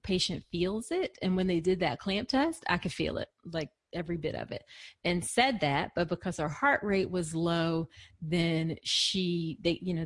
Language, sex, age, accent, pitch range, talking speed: English, female, 30-49, American, 160-190 Hz, 205 wpm